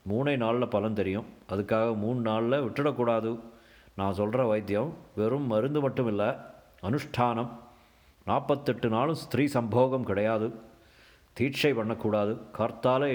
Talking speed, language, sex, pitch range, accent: 110 wpm, Tamil, male, 110-130 Hz, native